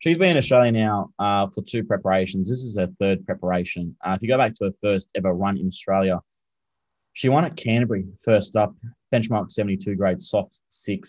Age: 20-39